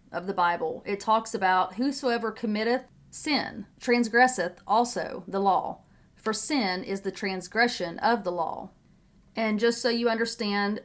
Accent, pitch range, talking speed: American, 195-235 Hz, 145 wpm